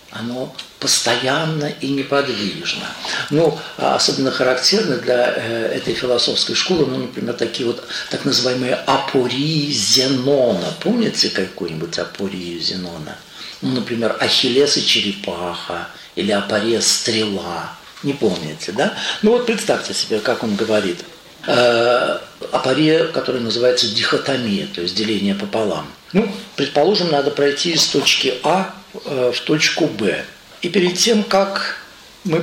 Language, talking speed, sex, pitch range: Russian, 120 wpm, male, 125-190 Hz